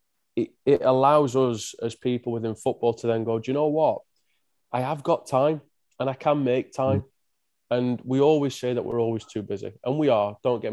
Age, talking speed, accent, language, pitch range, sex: 20-39, 205 wpm, British, English, 105-120 Hz, male